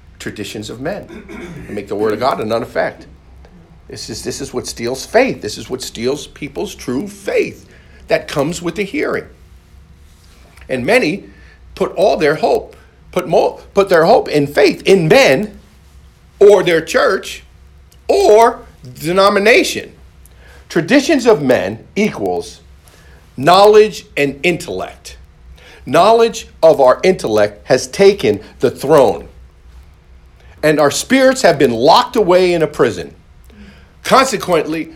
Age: 50-69